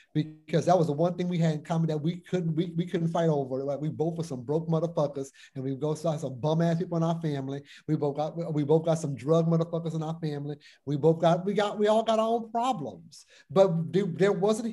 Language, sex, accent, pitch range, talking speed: English, male, American, 155-185 Hz, 255 wpm